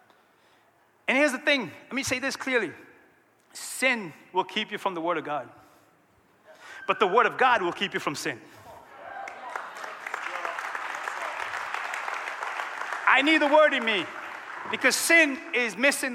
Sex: male